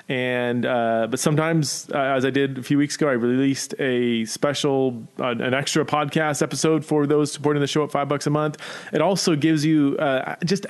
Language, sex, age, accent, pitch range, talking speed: English, male, 30-49, American, 120-160 Hz, 210 wpm